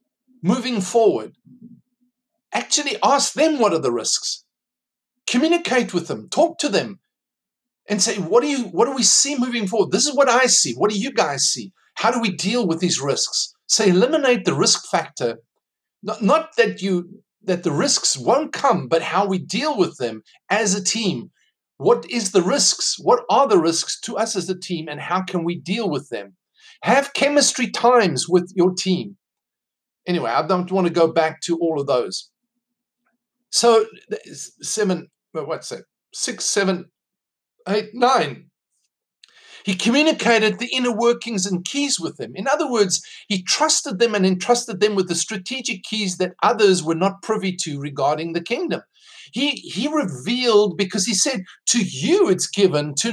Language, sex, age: English, male, 50-69